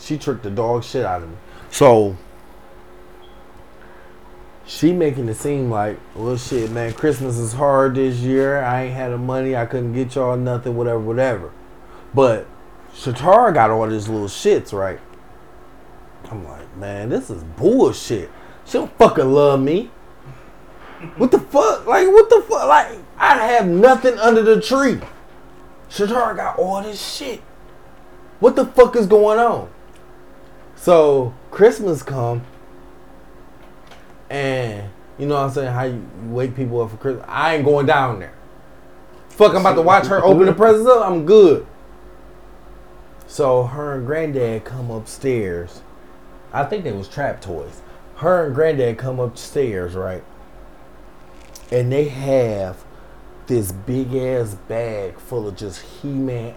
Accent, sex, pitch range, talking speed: American, male, 110-150 Hz, 150 wpm